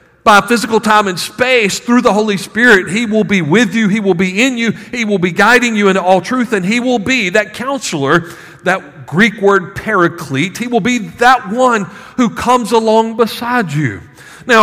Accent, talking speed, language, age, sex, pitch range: American, 195 wpm, English, 50-69, male, 190-230 Hz